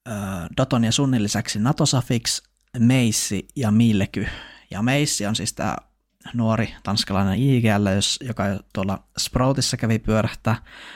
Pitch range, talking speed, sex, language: 100-120 Hz, 115 wpm, male, Finnish